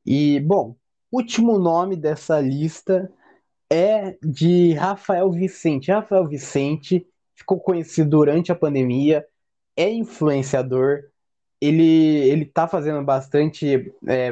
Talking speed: 105 wpm